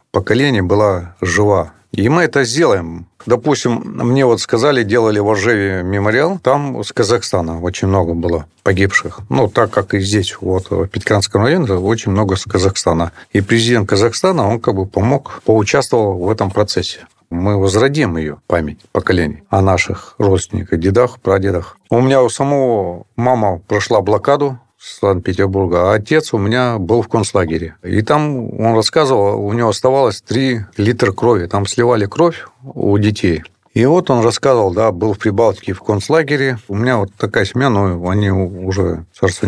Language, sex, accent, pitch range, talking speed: Russian, male, native, 95-120 Hz, 160 wpm